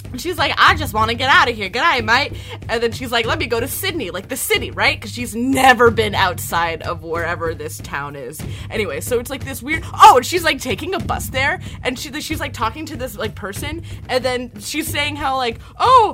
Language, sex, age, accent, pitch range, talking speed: English, female, 20-39, American, 305-445 Hz, 240 wpm